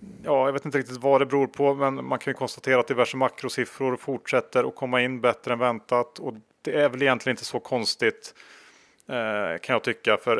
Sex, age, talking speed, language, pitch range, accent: male, 30-49, 210 wpm, Swedish, 110-140 Hz, Norwegian